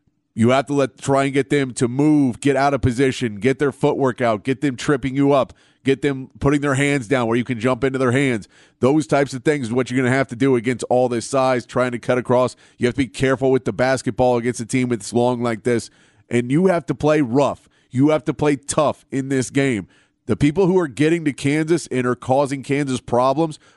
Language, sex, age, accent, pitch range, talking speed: English, male, 30-49, American, 125-145 Hz, 245 wpm